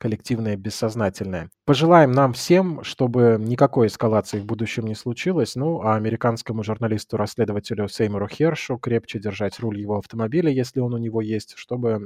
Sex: male